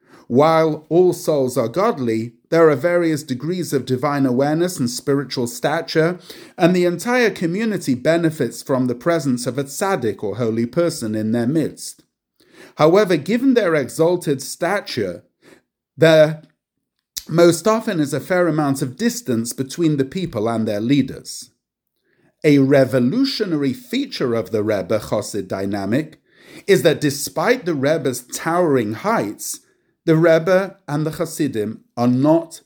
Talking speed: 135 wpm